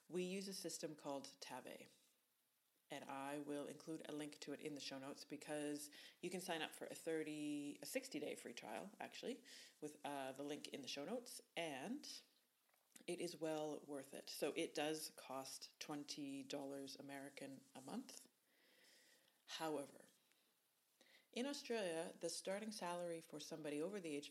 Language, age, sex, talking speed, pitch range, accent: English, 30-49, female, 155 wpm, 145-215 Hz, American